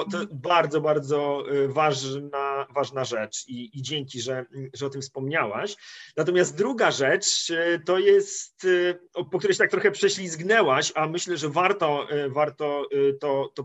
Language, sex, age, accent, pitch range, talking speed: Polish, male, 30-49, native, 145-185 Hz, 140 wpm